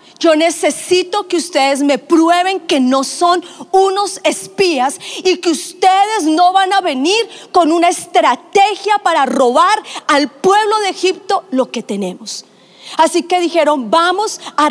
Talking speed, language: 145 wpm, Spanish